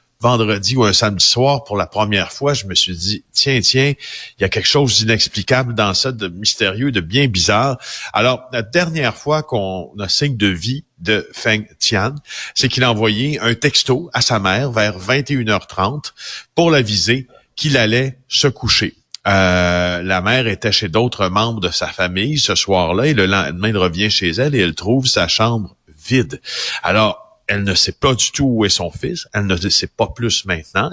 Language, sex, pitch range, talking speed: French, male, 95-130 Hz, 195 wpm